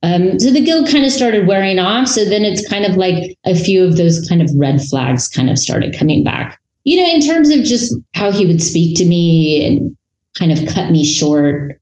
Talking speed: 235 wpm